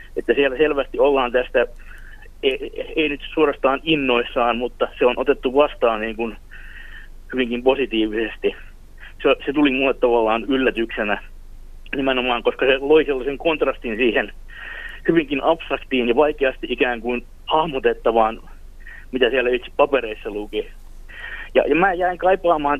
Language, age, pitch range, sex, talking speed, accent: Finnish, 30-49, 120-160 Hz, male, 130 wpm, native